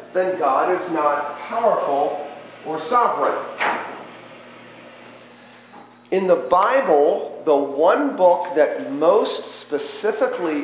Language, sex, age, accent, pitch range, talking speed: English, male, 40-59, American, 145-220 Hz, 90 wpm